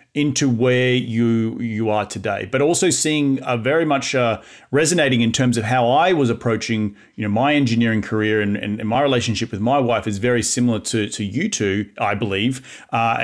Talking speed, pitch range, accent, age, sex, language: 195 wpm, 110-135 Hz, Australian, 30-49, male, English